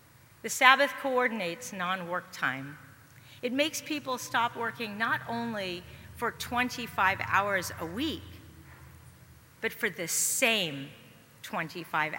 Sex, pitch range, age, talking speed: female, 160-245 Hz, 40-59, 110 wpm